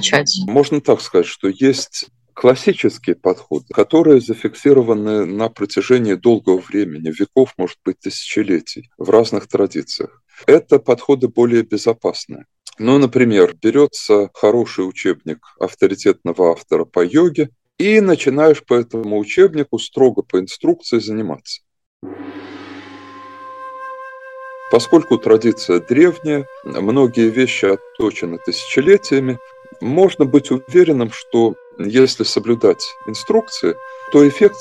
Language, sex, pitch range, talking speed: Russian, male, 115-170 Hz, 100 wpm